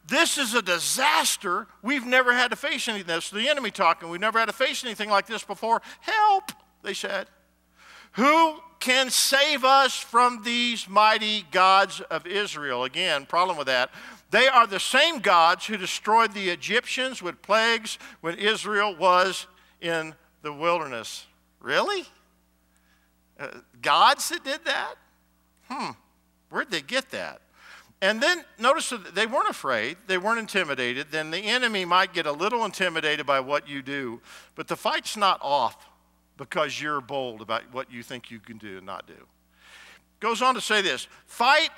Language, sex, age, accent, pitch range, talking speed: English, male, 50-69, American, 160-265 Hz, 165 wpm